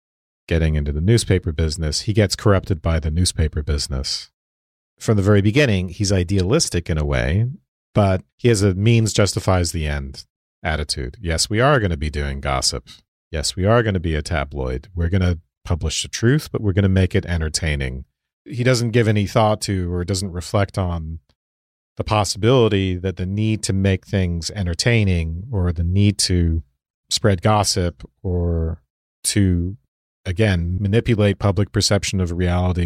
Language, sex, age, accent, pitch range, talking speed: English, male, 40-59, American, 80-105 Hz, 170 wpm